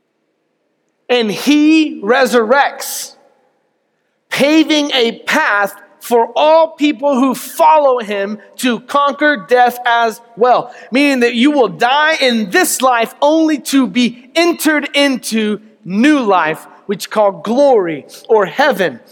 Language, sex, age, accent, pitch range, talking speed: English, male, 30-49, American, 195-270 Hz, 120 wpm